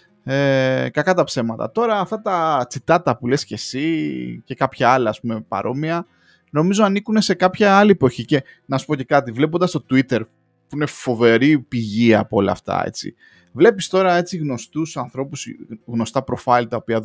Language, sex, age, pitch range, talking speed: Greek, male, 20-39, 115-170 Hz, 175 wpm